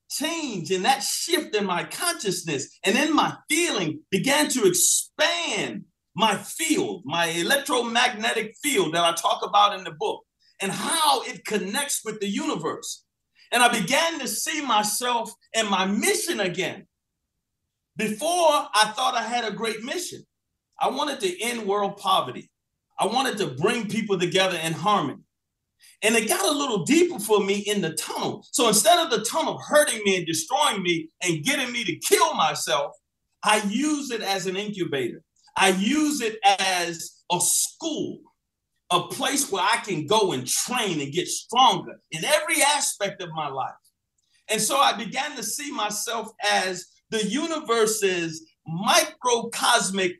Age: 40-59